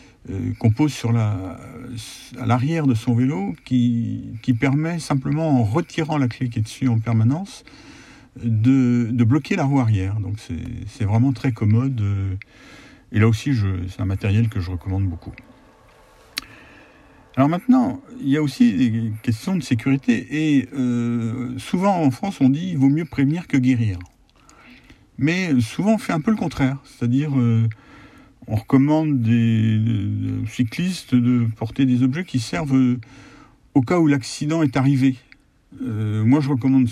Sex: male